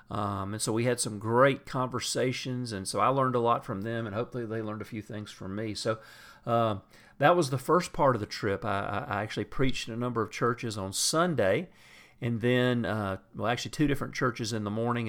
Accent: American